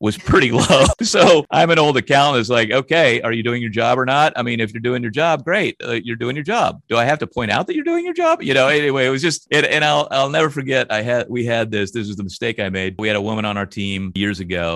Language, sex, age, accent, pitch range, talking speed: English, male, 40-59, American, 95-130 Hz, 300 wpm